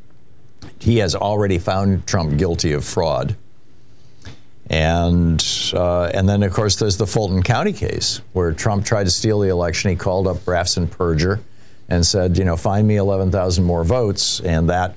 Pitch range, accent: 85-105 Hz, American